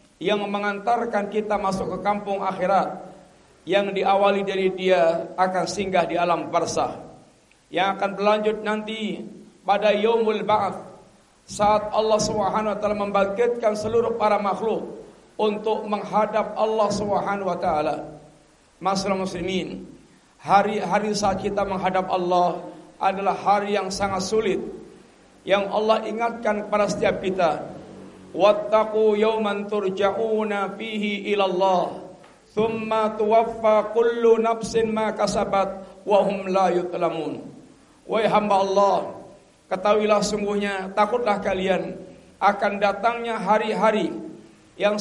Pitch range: 190-215 Hz